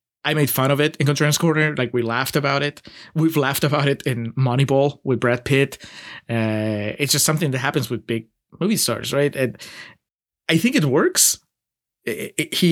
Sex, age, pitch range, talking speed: male, 20-39, 120-155 Hz, 185 wpm